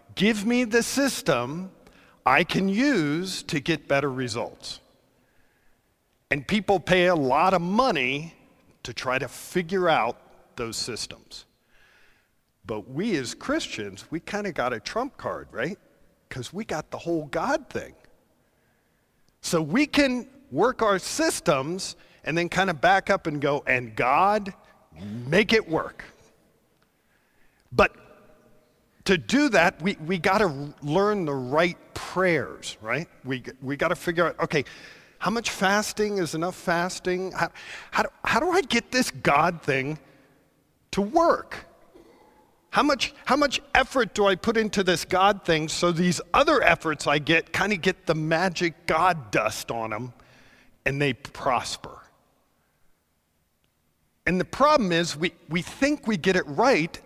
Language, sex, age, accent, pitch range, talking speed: English, male, 50-69, American, 145-200 Hz, 145 wpm